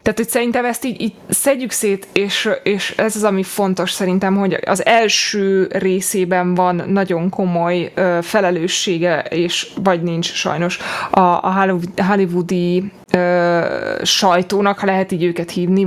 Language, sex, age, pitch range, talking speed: Hungarian, female, 20-39, 180-215 Hz, 135 wpm